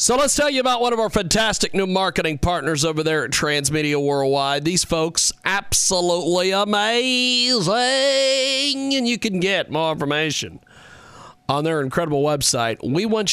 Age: 40-59